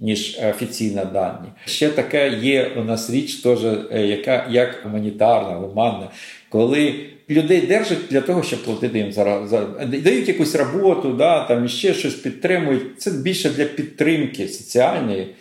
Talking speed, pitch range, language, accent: 150 wpm, 100-135 Hz, Ukrainian, native